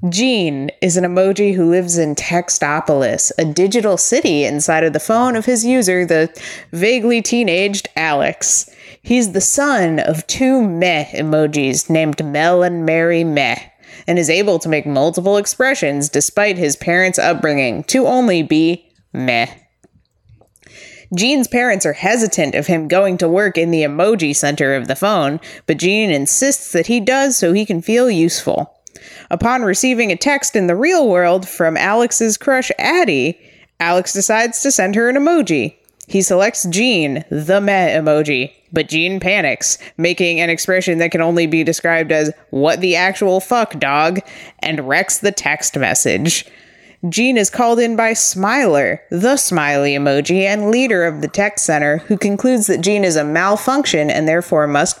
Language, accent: English, American